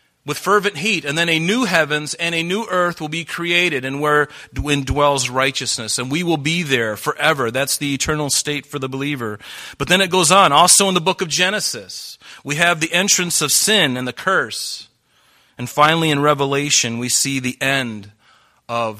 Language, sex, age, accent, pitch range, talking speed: English, male, 40-59, American, 115-150 Hz, 195 wpm